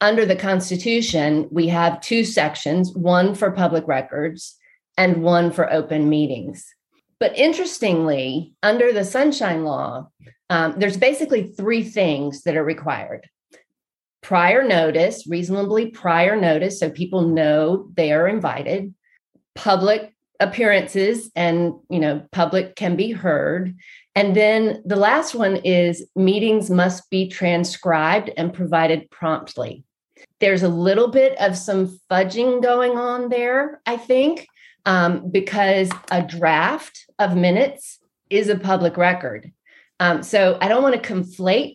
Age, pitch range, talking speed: 40-59, 170-220 Hz, 130 wpm